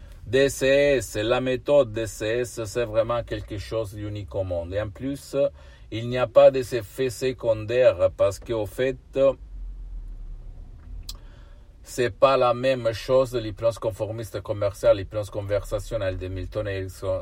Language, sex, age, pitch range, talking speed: Italian, male, 50-69, 95-115 Hz, 145 wpm